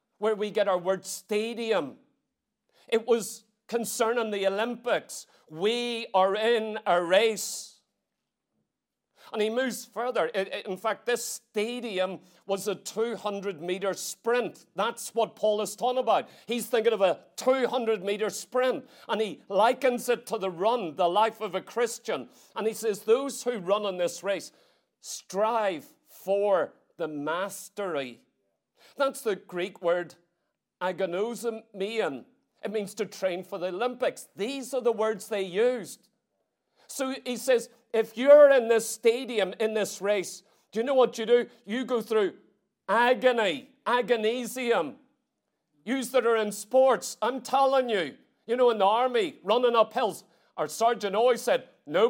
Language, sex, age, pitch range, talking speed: English, male, 40-59, 200-245 Hz, 145 wpm